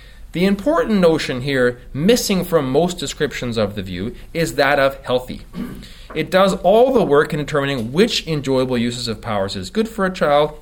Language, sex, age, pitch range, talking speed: English, male, 30-49, 120-185 Hz, 180 wpm